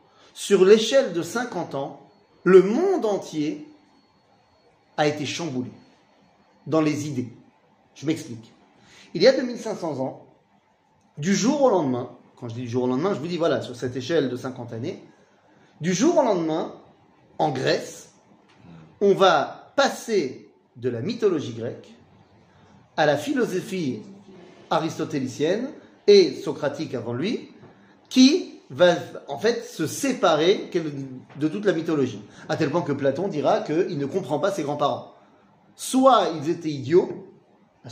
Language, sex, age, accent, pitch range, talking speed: French, male, 40-59, French, 130-200 Hz, 140 wpm